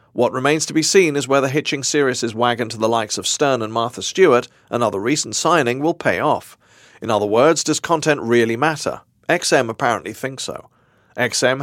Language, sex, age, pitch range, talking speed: English, male, 40-59, 120-150 Hz, 185 wpm